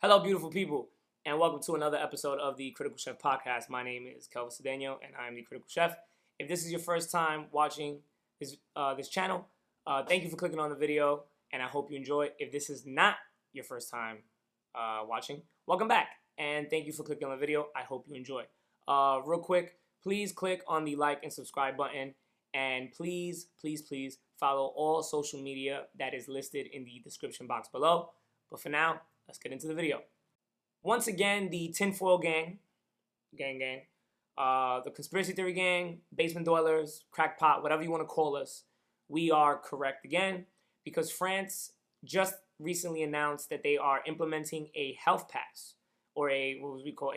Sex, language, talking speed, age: male, English, 190 wpm, 20-39